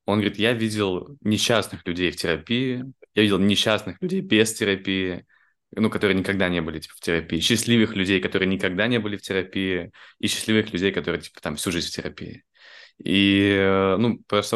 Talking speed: 175 wpm